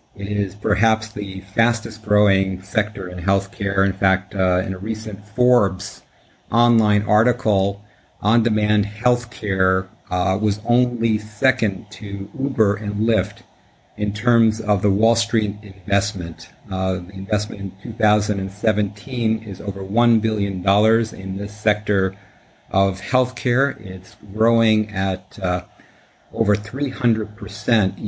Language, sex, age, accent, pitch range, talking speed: English, male, 50-69, American, 95-110 Hz, 120 wpm